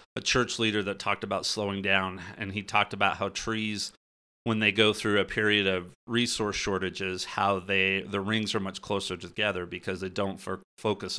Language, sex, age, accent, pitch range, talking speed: English, male, 30-49, American, 95-110 Hz, 190 wpm